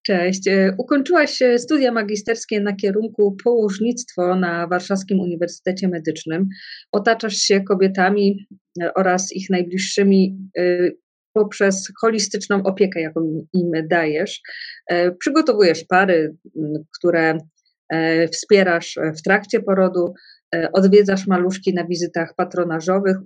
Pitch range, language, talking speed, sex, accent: 185-210 Hz, Polish, 90 wpm, female, native